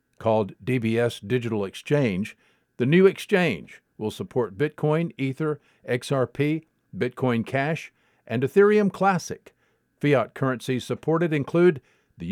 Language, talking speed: English, 105 wpm